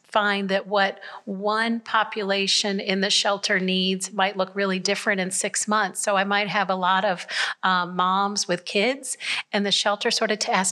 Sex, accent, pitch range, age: female, American, 185-220 Hz, 40-59